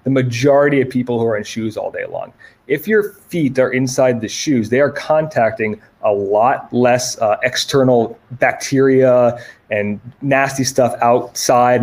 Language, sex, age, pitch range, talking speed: English, male, 20-39, 115-130 Hz, 155 wpm